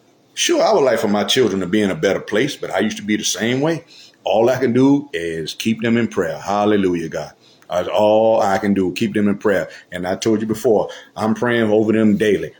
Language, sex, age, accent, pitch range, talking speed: English, male, 50-69, American, 100-135 Hz, 245 wpm